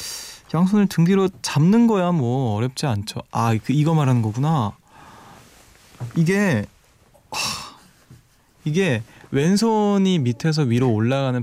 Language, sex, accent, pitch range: Korean, male, native, 115-155 Hz